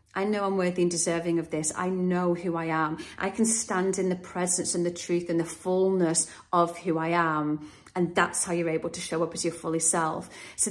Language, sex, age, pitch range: English, female, 30-49, 180-230 Hz